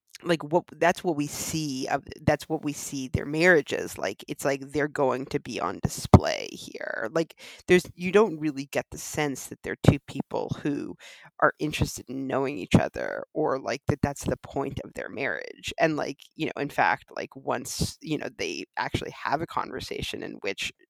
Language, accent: English, American